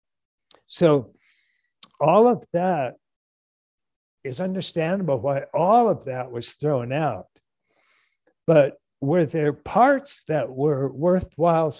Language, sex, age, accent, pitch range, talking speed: English, male, 60-79, American, 125-160 Hz, 100 wpm